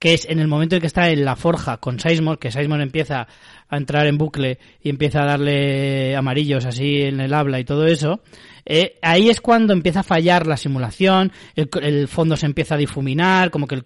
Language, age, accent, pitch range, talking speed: Spanish, 20-39, Spanish, 150-200 Hz, 220 wpm